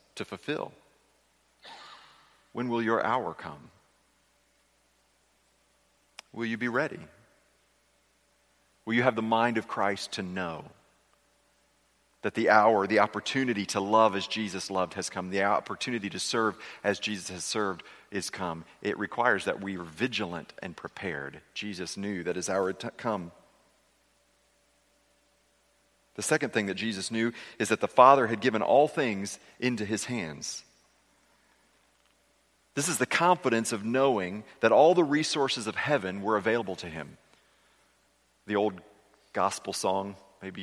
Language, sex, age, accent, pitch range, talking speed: English, male, 40-59, American, 95-120 Hz, 140 wpm